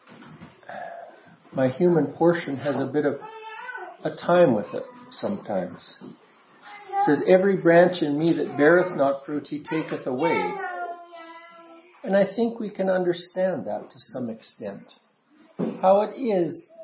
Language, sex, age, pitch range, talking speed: English, male, 50-69, 155-240 Hz, 135 wpm